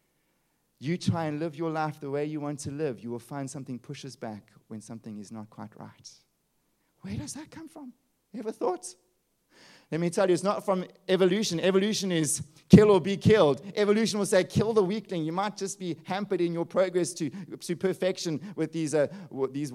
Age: 30-49